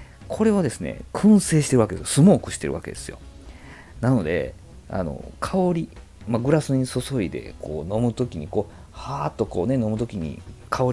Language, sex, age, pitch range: Japanese, male, 40-59, 90-120 Hz